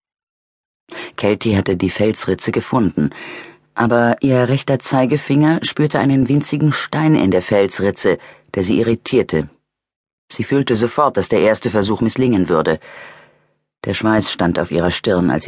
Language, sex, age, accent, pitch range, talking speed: German, female, 40-59, German, 95-130 Hz, 135 wpm